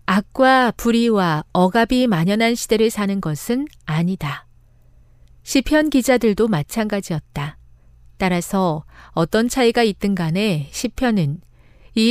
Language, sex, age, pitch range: Korean, female, 40-59, 165-240 Hz